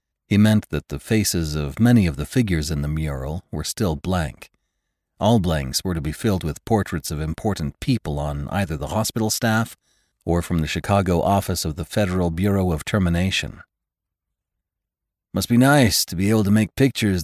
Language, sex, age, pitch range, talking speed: English, male, 40-59, 80-110 Hz, 180 wpm